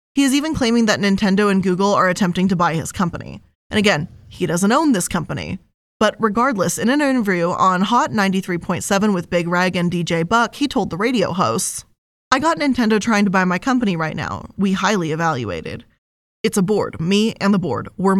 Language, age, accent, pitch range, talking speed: English, 10-29, American, 180-220 Hz, 200 wpm